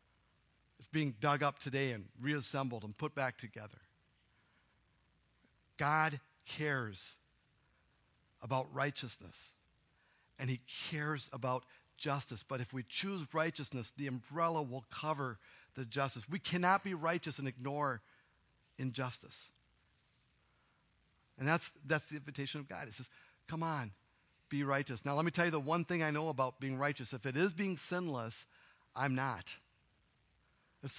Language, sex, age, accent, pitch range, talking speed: English, male, 50-69, American, 135-180 Hz, 140 wpm